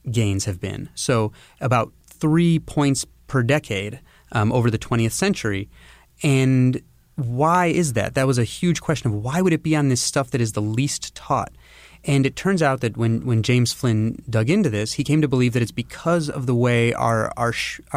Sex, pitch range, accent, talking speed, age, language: male, 105-130 Hz, American, 205 wpm, 30-49, English